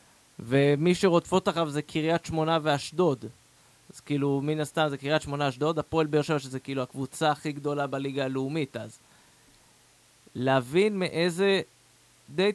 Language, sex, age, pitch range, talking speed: Hebrew, male, 20-39, 140-170 Hz, 140 wpm